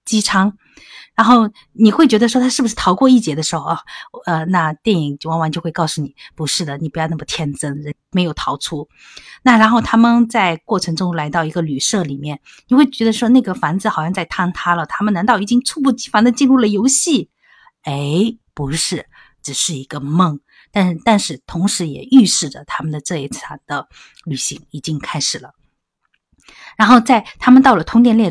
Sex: female